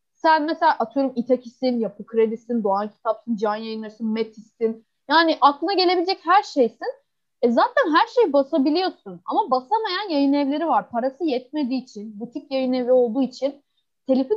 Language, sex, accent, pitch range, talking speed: Turkish, female, native, 215-345 Hz, 140 wpm